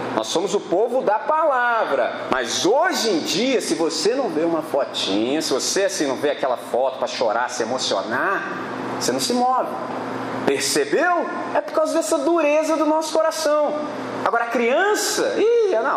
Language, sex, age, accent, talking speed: Portuguese, male, 40-59, Brazilian, 175 wpm